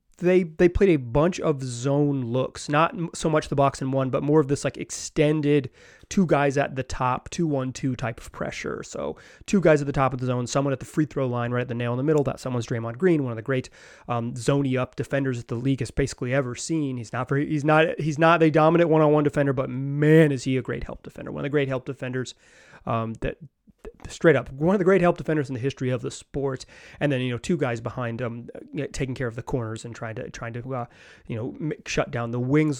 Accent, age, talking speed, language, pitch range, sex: American, 30-49, 260 wpm, English, 125-155 Hz, male